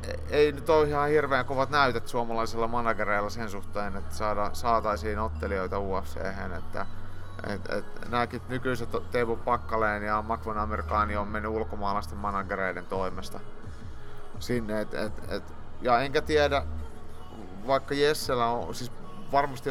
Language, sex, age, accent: Finnish, male, 30-49, native